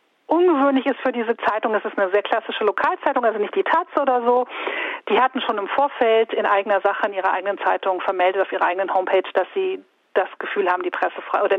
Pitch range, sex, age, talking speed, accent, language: 190-255 Hz, female, 40-59, 220 wpm, German, German